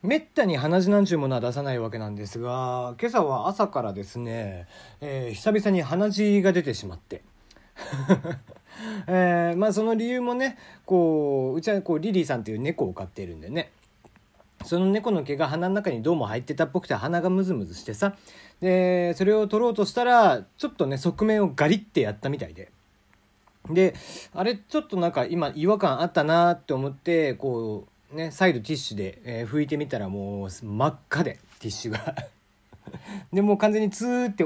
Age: 40-59